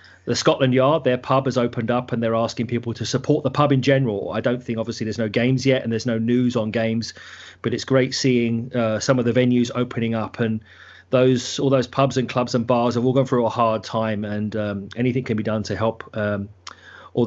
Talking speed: 240 wpm